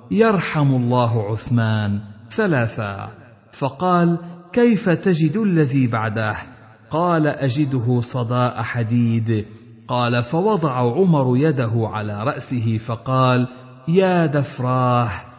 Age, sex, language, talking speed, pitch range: 50-69, male, Arabic, 85 wpm, 115-150 Hz